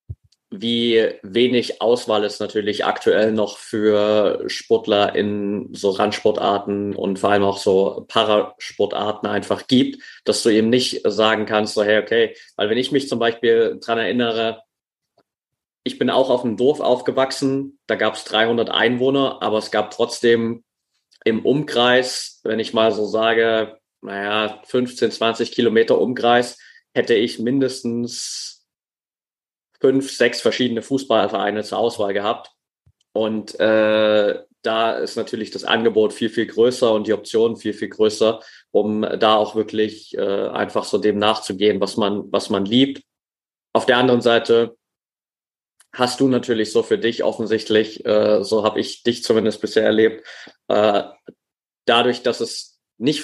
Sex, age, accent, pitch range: male, 30-49, German, 105-120 Hz